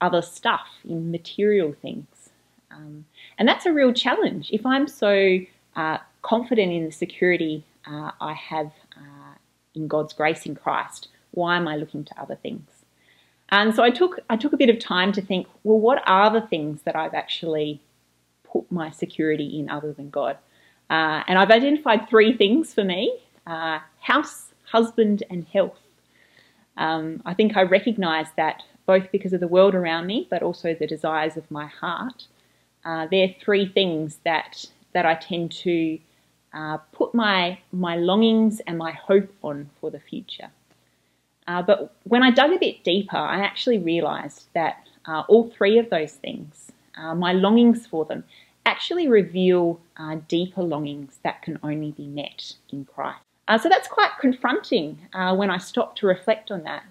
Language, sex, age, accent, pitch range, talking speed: English, female, 30-49, Australian, 155-215 Hz, 175 wpm